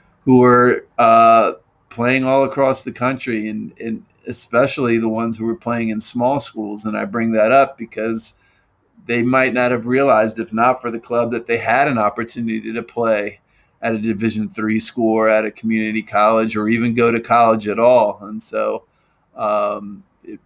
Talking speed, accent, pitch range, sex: 180 wpm, American, 110-120 Hz, male